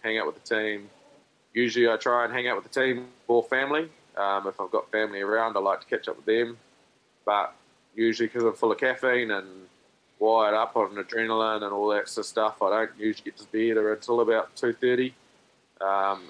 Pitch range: 100-120 Hz